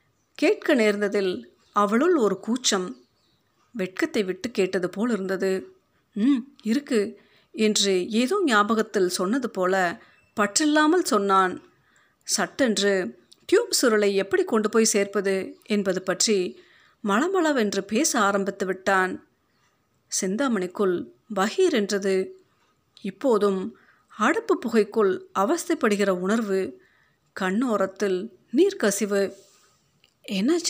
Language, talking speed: Tamil, 85 wpm